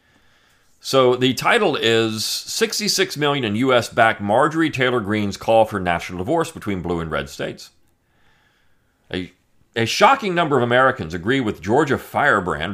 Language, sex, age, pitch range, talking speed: English, male, 40-59, 95-125 Hz, 140 wpm